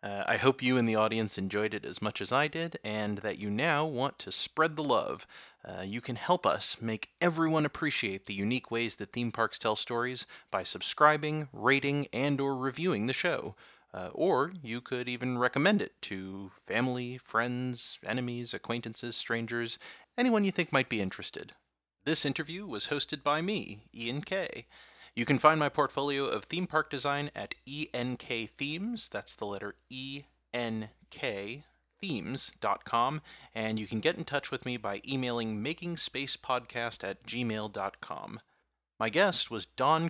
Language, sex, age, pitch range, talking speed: English, male, 30-49, 115-150 Hz, 160 wpm